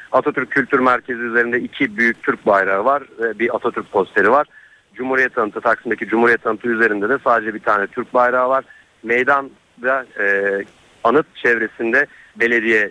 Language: Turkish